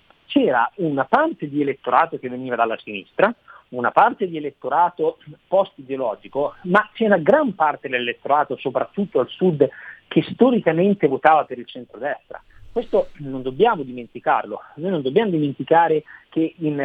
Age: 40-59